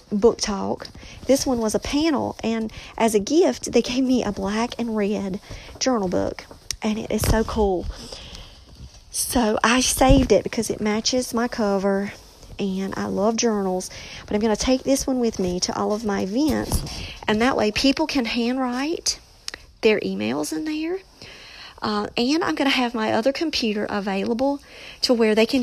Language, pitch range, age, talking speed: English, 195-245 Hz, 40-59, 180 wpm